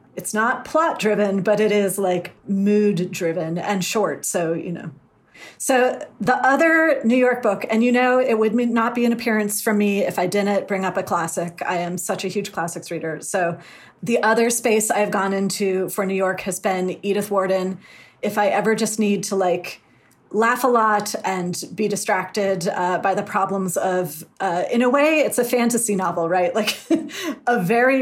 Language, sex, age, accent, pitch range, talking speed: English, female, 30-49, American, 190-225 Hz, 195 wpm